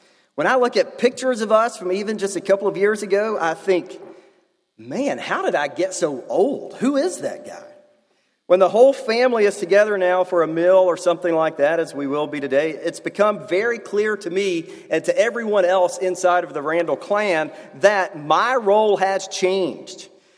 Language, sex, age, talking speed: English, male, 40-59, 195 wpm